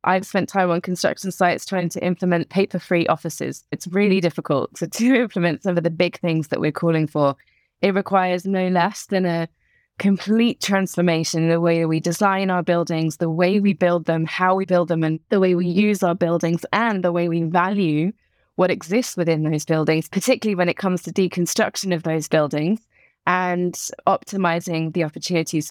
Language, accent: English, British